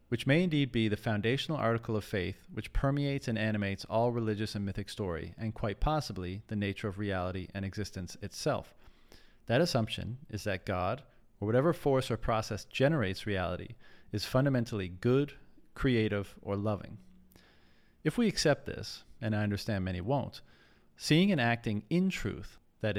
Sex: male